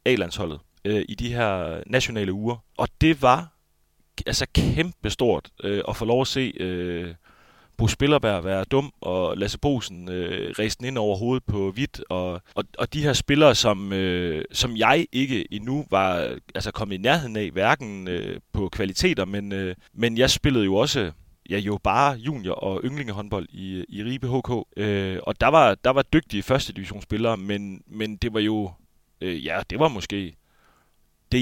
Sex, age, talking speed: male, 30-49, 180 wpm